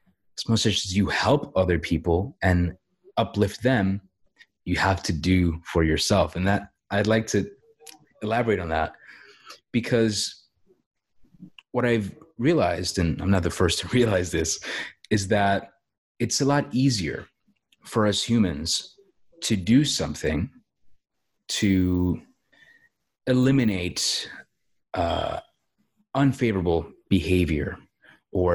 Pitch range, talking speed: 90-115 Hz, 115 wpm